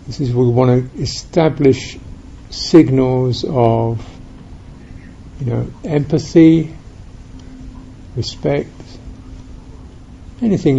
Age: 60-79